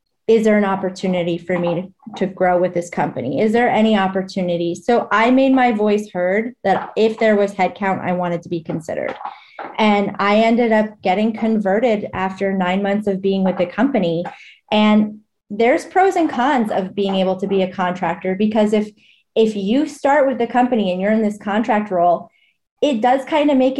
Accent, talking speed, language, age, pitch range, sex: American, 195 wpm, English, 30-49, 185-220 Hz, female